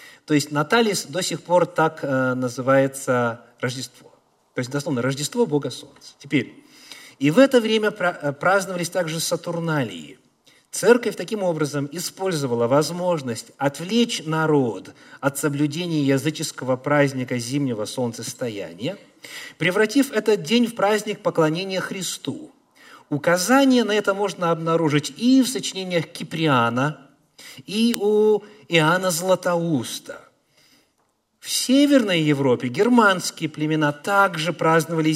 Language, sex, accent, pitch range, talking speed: Russian, male, native, 145-200 Hz, 105 wpm